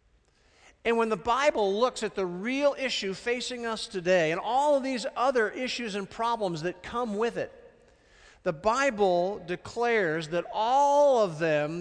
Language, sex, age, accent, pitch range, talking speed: English, male, 50-69, American, 165-230 Hz, 160 wpm